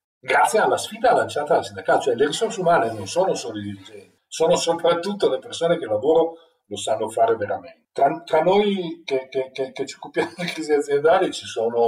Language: Italian